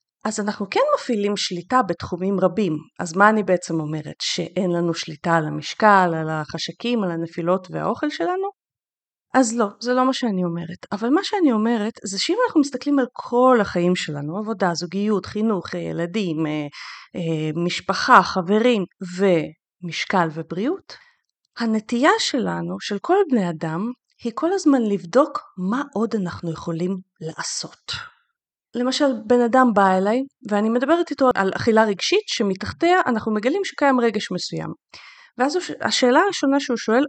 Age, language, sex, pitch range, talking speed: 30-49, Hebrew, female, 180-250 Hz, 140 wpm